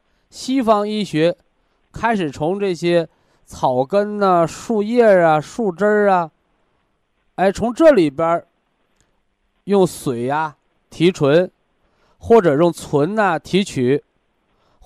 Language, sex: Chinese, male